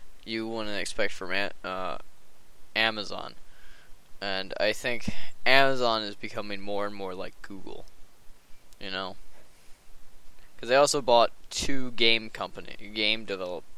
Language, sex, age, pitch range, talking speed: English, male, 20-39, 100-120 Hz, 120 wpm